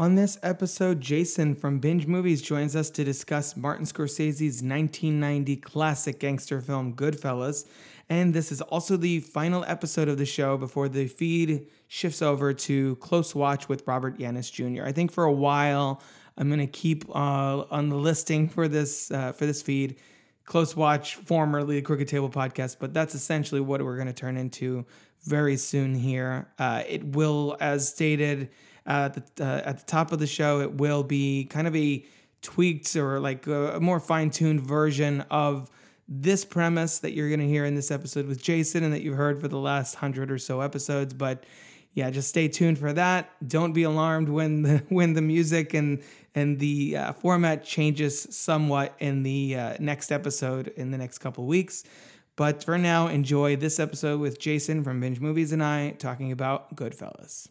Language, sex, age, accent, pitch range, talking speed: English, male, 20-39, American, 140-160 Hz, 185 wpm